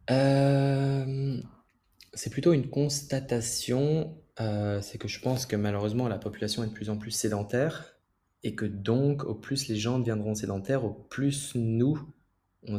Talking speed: 155 wpm